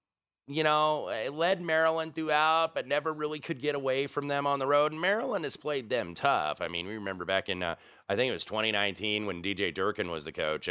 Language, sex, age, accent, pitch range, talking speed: English, male, 30-49, American, 95-125 Hz, 230 wpm